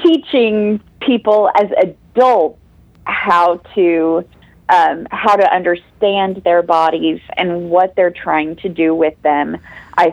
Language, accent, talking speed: English, American, 125 wpm